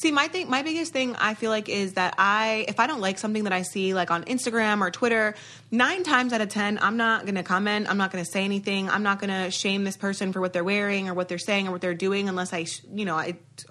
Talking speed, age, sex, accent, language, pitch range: 285 wpm, 20-39, female, American, English, 180-215 Hz